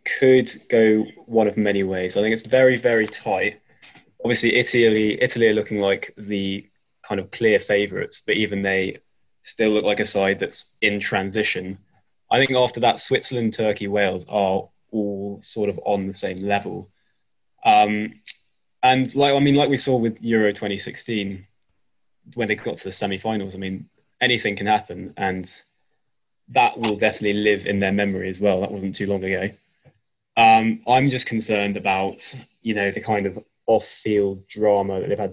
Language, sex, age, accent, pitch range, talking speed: English, male, 20-39, British, 95-110 Hz, 170 wpm